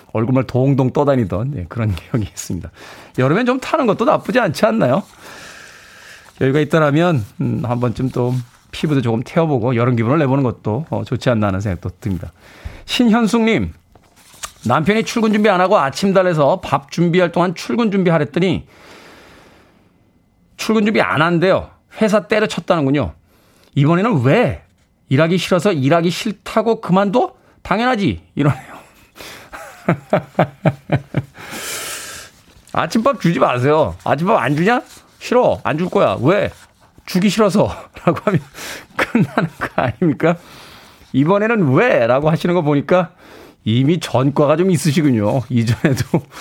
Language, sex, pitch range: Korean, male, 120-180 Hz